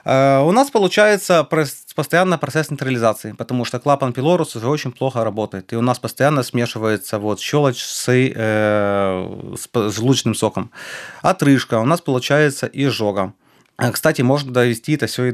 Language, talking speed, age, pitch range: Ukrainian, 150 wpm, 30-49, 110-140 Hz